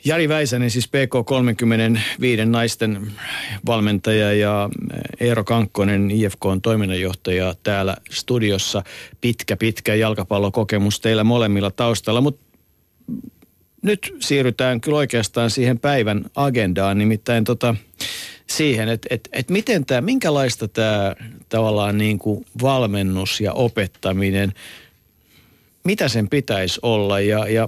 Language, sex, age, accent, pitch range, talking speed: Finnish, male, 50-69, native, 100-125 Hz, 100 wpm